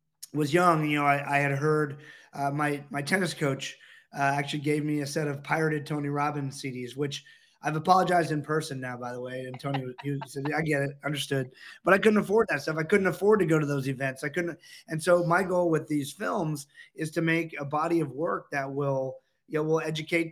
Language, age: English, 30-49